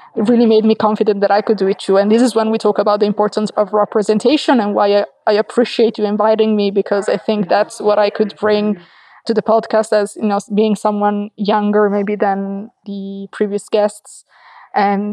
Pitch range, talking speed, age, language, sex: 200-220 Hz, 210 wpm, 20-39, English, female